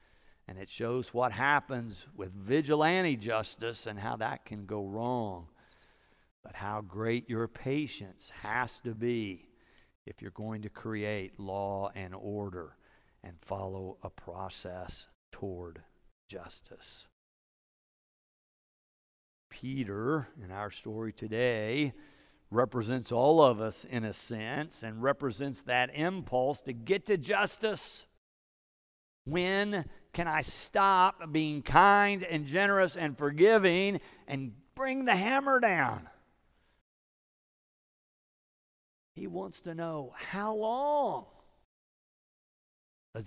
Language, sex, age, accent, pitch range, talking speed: English, male, 60-79, American, 100-155 Hz, 110 wpm